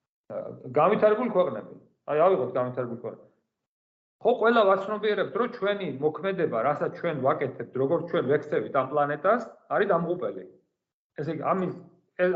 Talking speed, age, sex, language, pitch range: 175 wpm, 50-69, male, English, 160-215 Hz